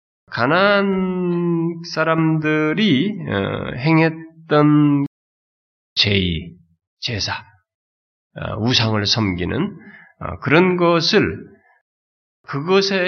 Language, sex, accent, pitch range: Korean, male, native, 100-165 Hz